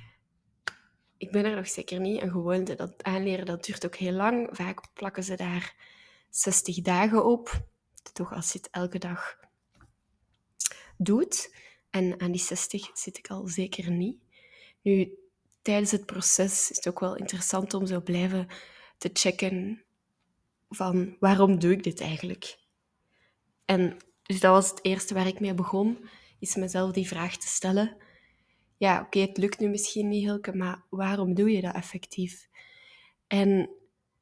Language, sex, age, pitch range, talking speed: Dutch, female, 20-39, 185-200 Hz, 155 wpm